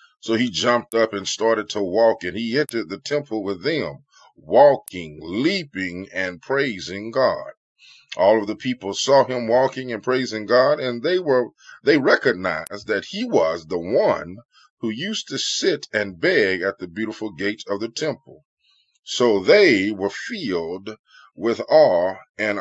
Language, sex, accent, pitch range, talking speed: English, male, American, 95-140 Hz, 160 wpm